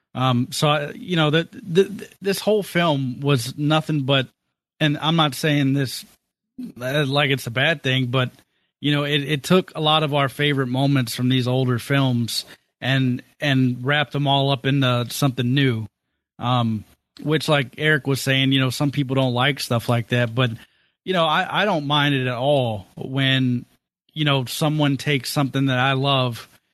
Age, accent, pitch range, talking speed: 30-49, American, 125-150 Hz, 180 wpm